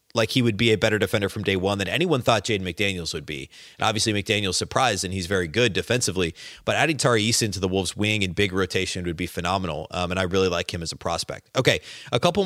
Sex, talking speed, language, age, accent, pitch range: male, 250 wpm, English, 30-49, American, 95-120 Hz